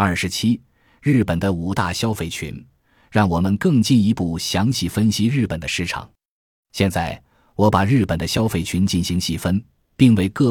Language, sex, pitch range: Chinese, male, 85-115 Hz